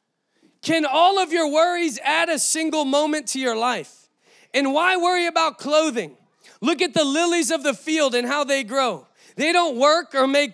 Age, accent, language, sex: 20-39, American, English, male